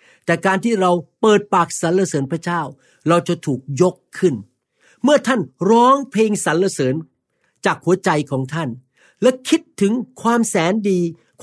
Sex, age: male, 60-79